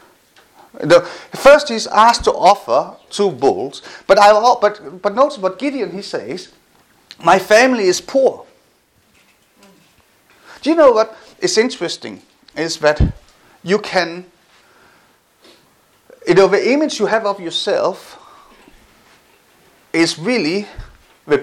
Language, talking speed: English, 110 wpm